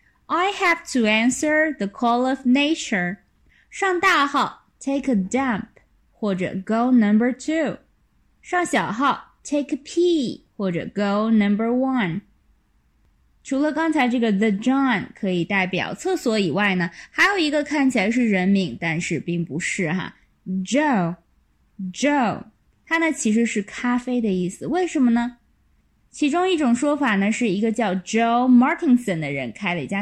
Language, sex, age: Chinese, female, 20-39